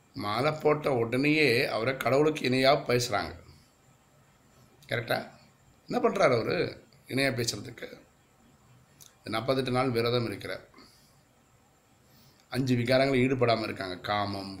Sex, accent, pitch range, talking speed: male, native, 110-135 Hz, 90 wpm